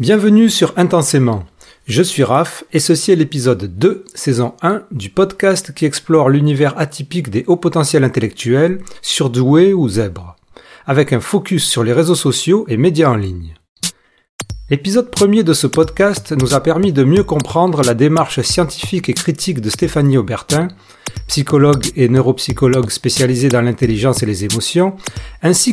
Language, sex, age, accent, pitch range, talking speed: French, male, 40-59, French, 125-170 Hz, 155 wpm